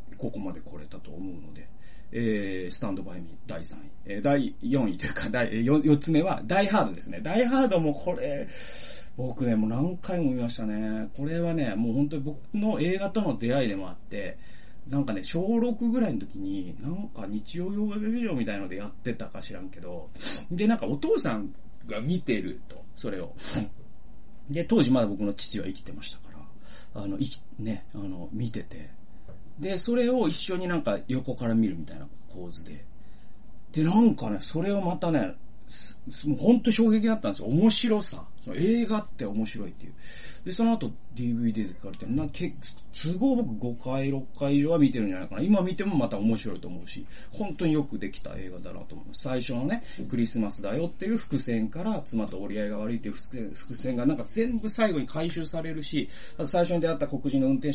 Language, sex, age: Japanese, male, 40-59